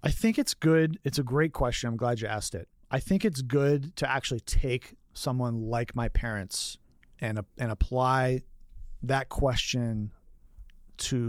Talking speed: 165 wpm